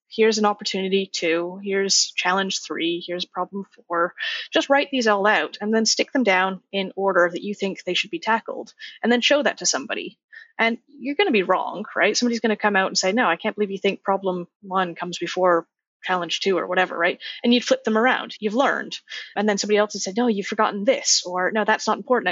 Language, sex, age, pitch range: English, female, 30-49, 180-225 Hz